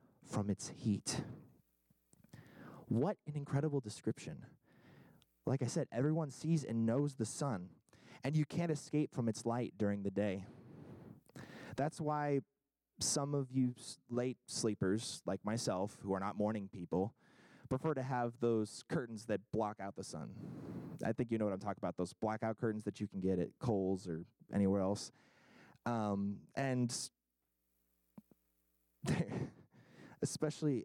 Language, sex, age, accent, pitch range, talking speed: English, male, 20-39, American, 100-135 Hz, 140 wpm